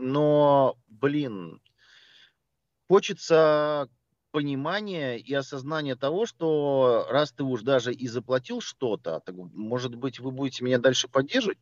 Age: 40-59